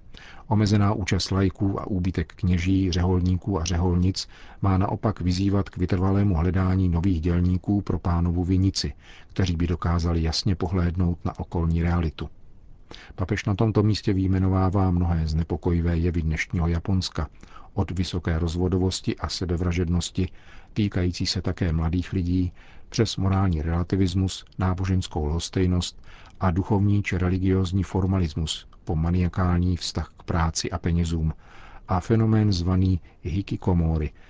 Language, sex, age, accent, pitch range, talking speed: Czech, male, 50-69, native, 85-95 Hz, 120 wpm